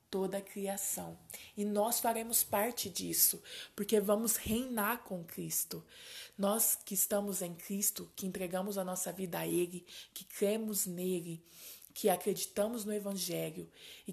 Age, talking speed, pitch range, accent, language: 20-39, 140 wpm, 185-225 Hz, Brazilian, Portuguese